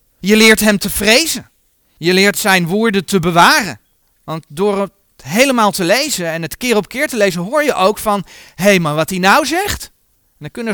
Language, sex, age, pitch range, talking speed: Dutch, male, 40-59, 150-225 Hz, 210 wpm